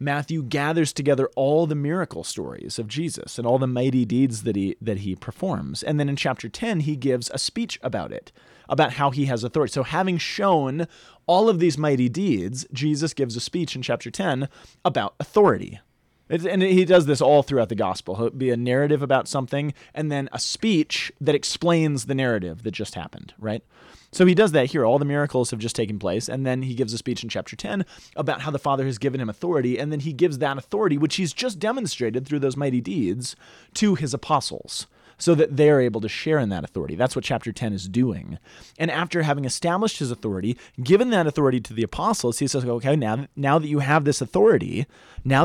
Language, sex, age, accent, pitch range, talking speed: English, male, 30-49, American, 120-155 Hz, 215 wpm